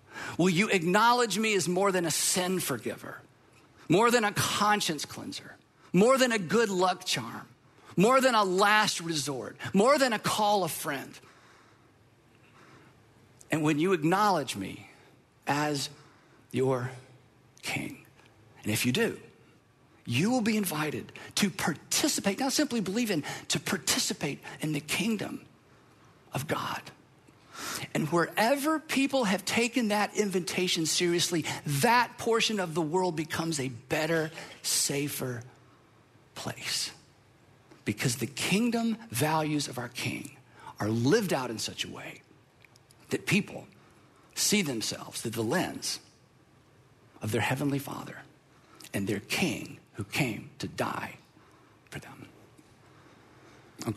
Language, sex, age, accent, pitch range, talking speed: English, male, 50-69, American, 130-205 Hz, 125 wpm